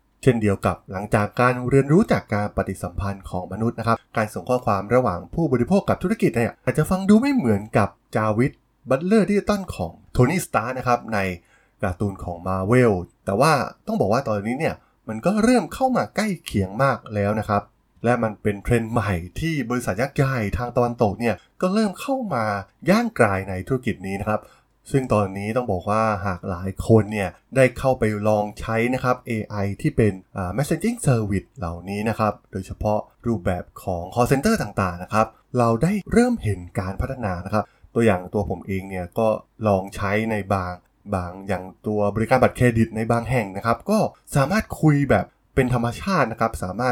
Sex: male